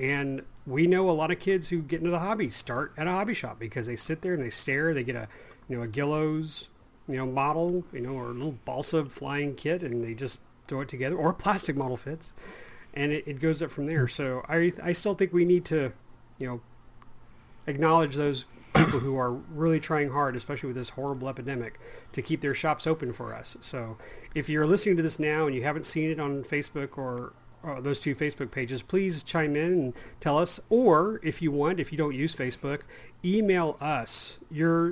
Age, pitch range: 30-49, 125-160 Hz